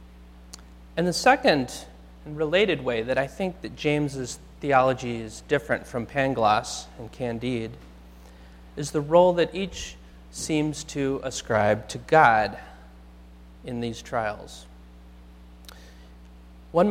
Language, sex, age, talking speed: English, male, 30-49, 115 wpm